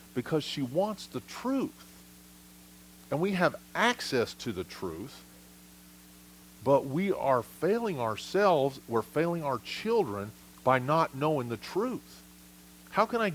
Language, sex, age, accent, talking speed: English, male, 40-59, American, 130 wpm